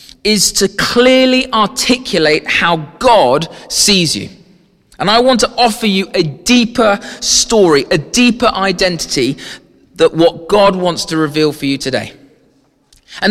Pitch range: 170-235 Hz